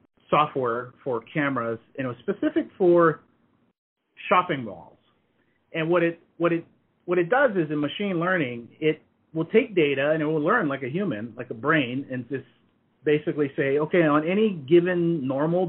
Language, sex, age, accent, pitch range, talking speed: English, male, 30-49, American, 135-170 Hz, 170 wpm